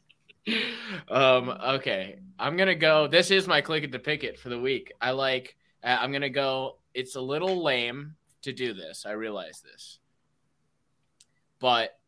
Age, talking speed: 20-39, 155 wpm